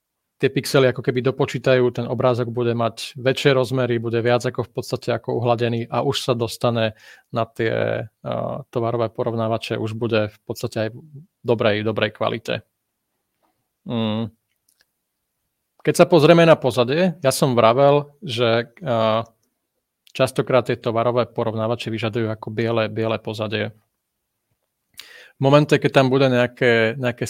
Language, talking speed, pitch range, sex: Czech, 130 wpm, 115-135 Hz, male